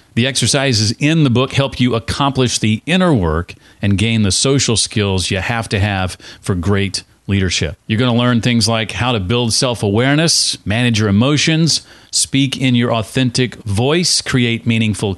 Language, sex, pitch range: English, male, 100-125 Hz